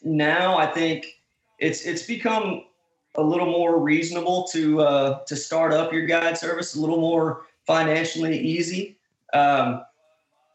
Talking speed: 135 wpm